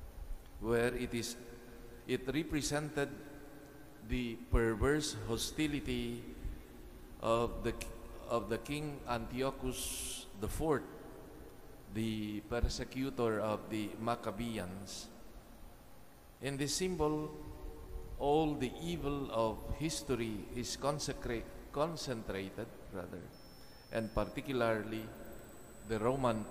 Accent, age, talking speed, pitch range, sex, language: Filipino, 50-69, 85 wpm, 105-130 Hz, male, English